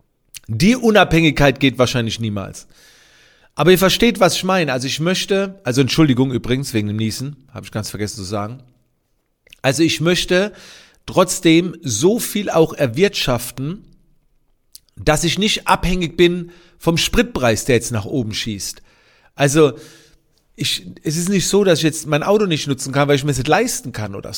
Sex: male